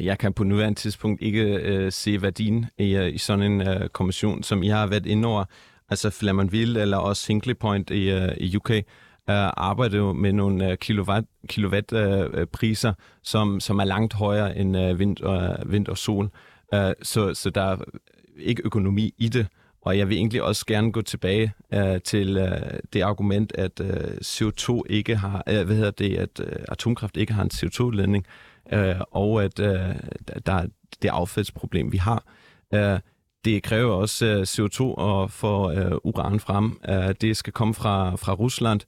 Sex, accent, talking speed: male, native, 180 wpm